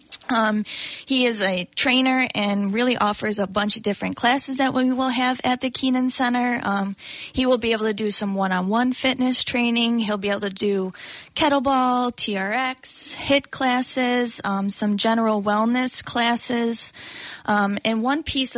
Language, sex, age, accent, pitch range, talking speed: English, female, 20-39, American, 195-245 Hz, 160 wpm